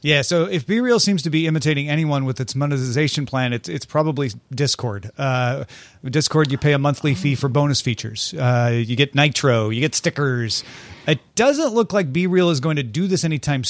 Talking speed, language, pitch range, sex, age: 195 wpm, English, 130-170 Hz, male, 30-49